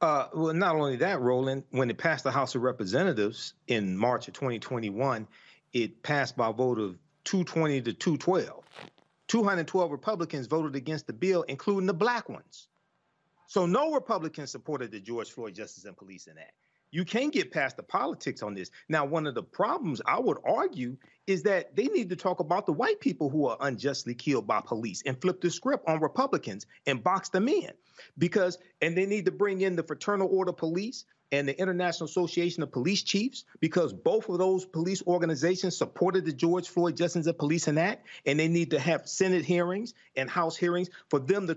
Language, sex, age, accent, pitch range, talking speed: English, male, 40-59, American, 150-190 Hz, 195 wpm